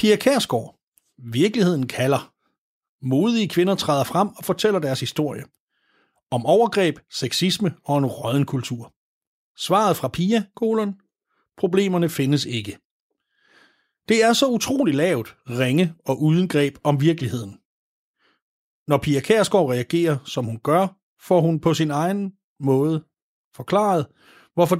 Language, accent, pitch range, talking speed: Danish, native, 135-195 Hz, 125 wpm